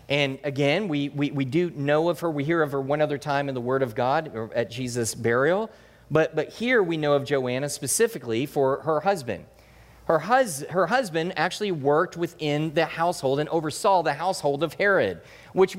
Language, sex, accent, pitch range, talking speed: English, male, American, 140-185 Hz, 200 wpm